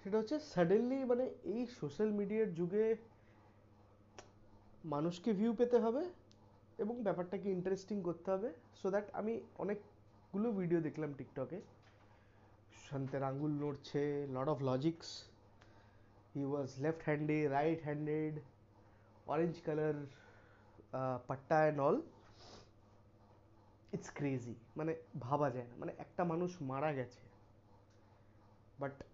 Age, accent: 30-49, Indian